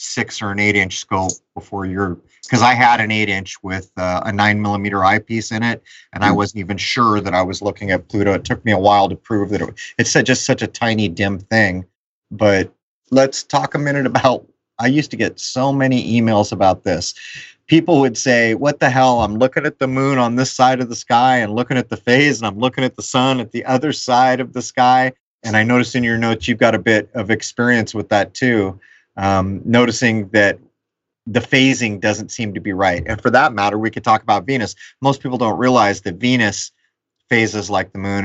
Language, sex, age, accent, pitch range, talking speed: English, male, 30-49, American, 100-125 Hz, 225 wpm